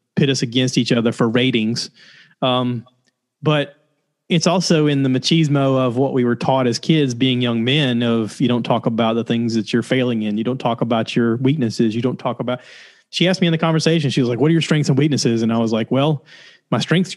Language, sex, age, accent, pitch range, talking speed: English, male, 30-49, American, 120-165 Hz, 235 wpm